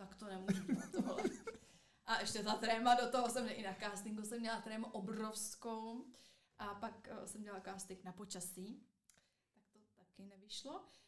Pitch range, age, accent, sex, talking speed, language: 200-230 Hz, 20-39, native, female, 155 wpm, Czech